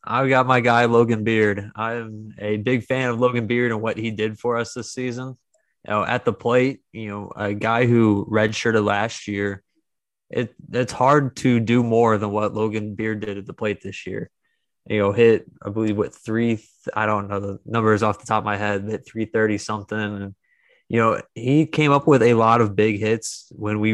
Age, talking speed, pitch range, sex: 20-39, 210 wpm, 105-120 Hz, male